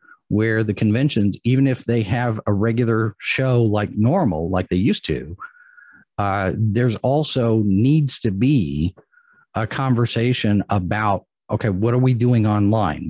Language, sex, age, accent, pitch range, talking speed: English, male, 40-59, American, 100-125 Hz, 140 wpm